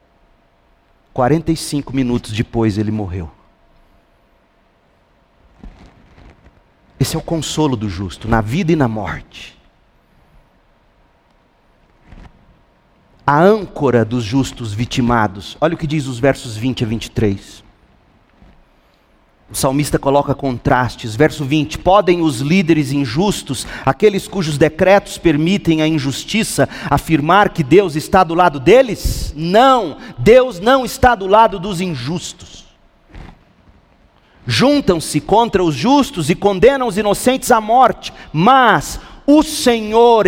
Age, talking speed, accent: 40-59, 110 wpm, Brazilian